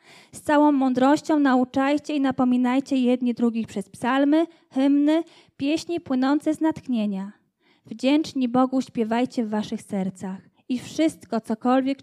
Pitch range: 225-280 Hz